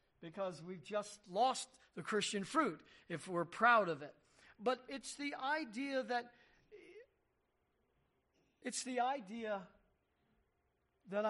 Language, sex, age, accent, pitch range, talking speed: English, male, 50-69, American, 165-215 Hz, 110 wpm